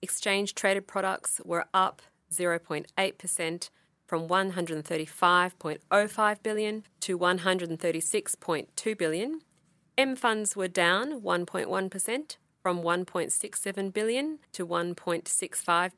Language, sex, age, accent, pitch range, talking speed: English, female, 40-59, Australian, 175-220 Hz, 85 wpm